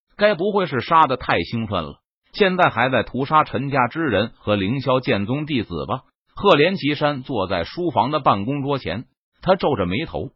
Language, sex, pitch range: Chinese, male, 110-165 Hz